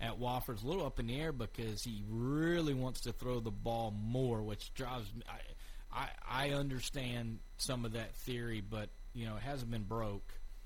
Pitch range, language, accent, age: 105-120 Hz, English, American, 40-59